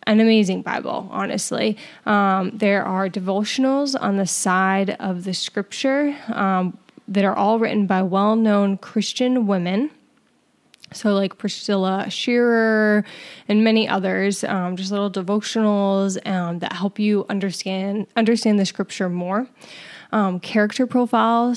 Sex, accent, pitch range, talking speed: female, American, 195-225 Hz, 130 wpm